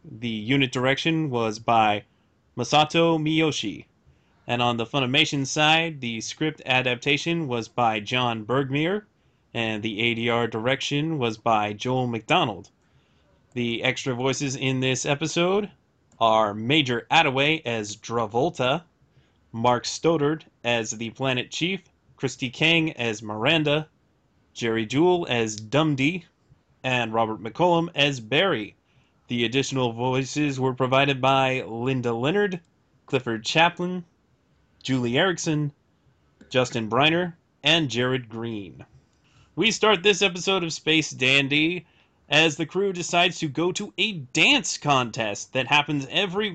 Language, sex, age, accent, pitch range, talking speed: English, male, 30-49, American, 120-165 Hz, 120 wpm